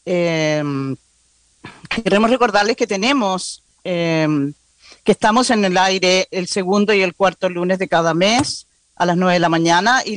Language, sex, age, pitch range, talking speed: English, female, 40-59, 160-210 Hz, 160 wpm